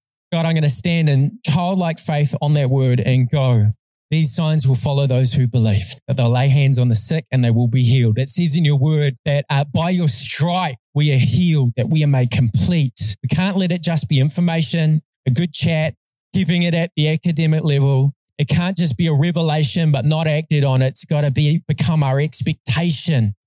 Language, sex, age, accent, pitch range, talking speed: English, male, 20-39, Australian, 135-175 Hz, 215 wpm